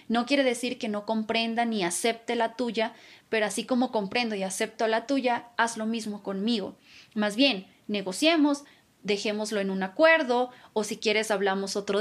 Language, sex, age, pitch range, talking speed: Spanish, female, 20-39, 210-250 Hz, 170 wpm